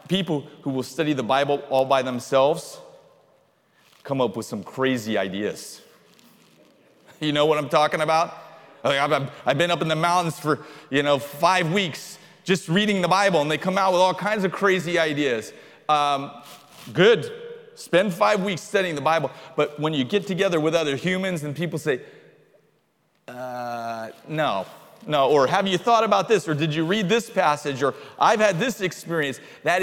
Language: English